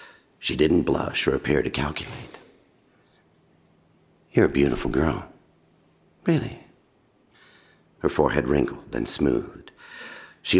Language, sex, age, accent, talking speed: English, male, 50-69, American, 100 wpm